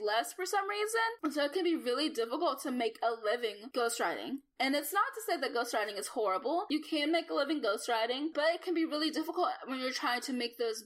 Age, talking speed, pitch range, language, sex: 10-29, 240 wpm, 225-315 Hz, English, female